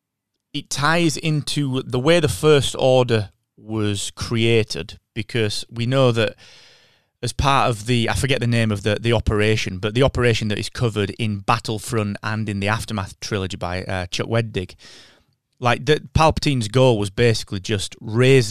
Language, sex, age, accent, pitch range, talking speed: English, male, 30-49, British, 105-130 Hz, 165 wpm